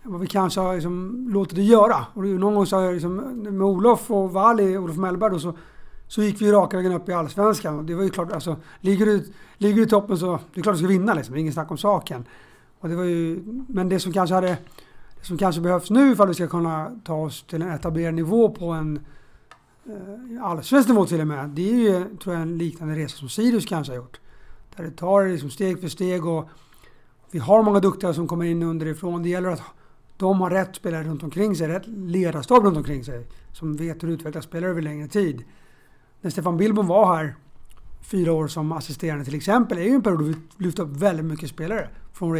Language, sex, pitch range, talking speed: Swedish, male, 155-195 Hz, 230 wpm